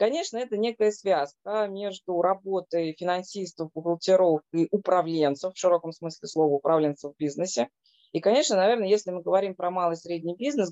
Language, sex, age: Russian, female, 20-39